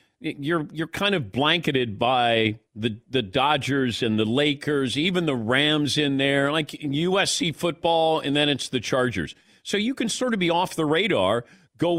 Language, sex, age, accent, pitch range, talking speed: English, male, 40-59, American, 115-175 Hz, 175 wpm